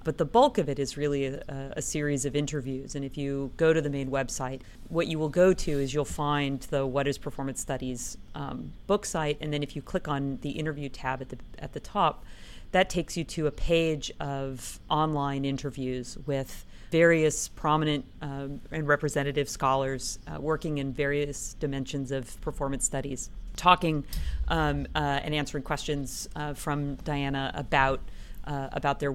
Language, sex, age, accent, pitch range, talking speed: English, female, 40-59, American, 135-160 Hz, 180 wpm